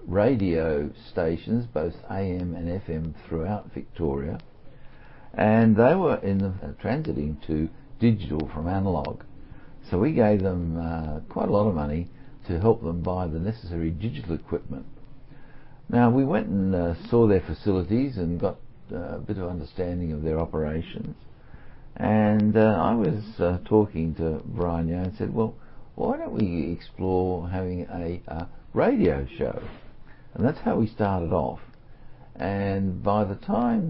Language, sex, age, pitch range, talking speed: English, male, 60-79, 80-110 Hz, 150 wpm